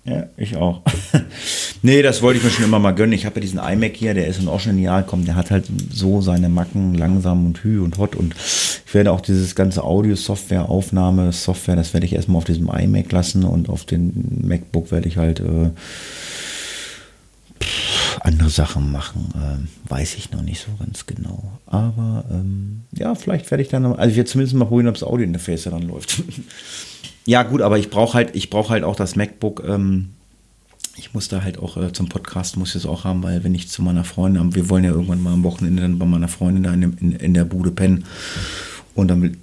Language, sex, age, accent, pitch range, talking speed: German, male, 30-49, German, 85-100 Hz, 205 wpm